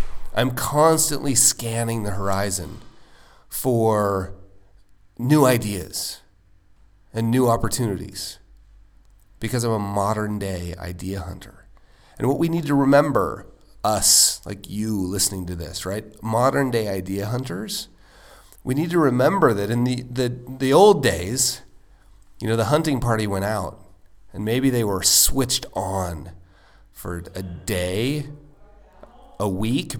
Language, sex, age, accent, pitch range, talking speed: English, male, 40-59, American, 100-145 Hz, 125 wpm